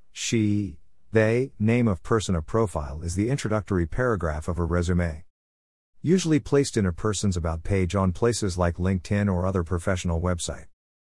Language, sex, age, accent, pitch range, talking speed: English, male, 50-69, American, 85-110 Hz, 155 wpm